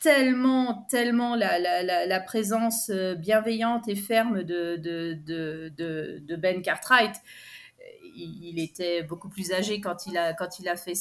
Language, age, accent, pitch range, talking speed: French, 30-49, French, 185-260 Hz, 155 wpm